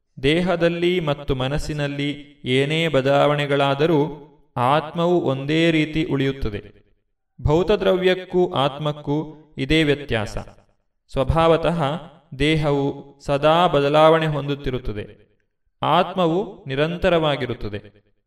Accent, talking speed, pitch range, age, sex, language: native, 65 wpm, 130-160 Hz, 30-49, male, Kannada